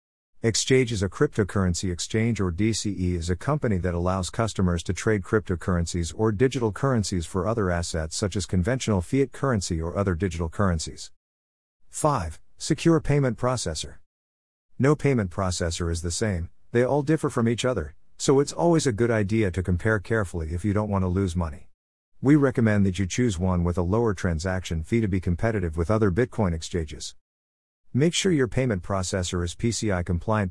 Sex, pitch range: male, 85-120 Hz